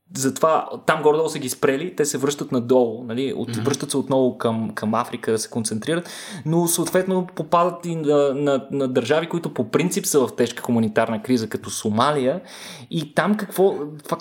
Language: Bulgarian